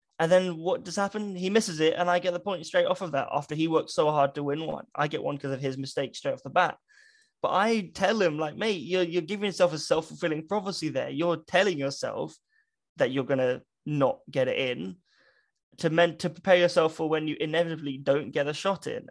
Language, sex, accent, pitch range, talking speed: English, male, British, 135-175 Hz, 235 wpm